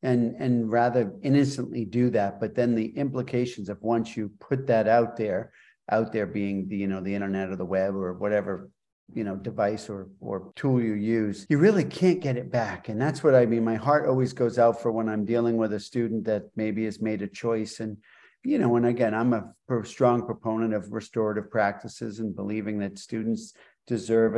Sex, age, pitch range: male, 50-69, 110-125 Hz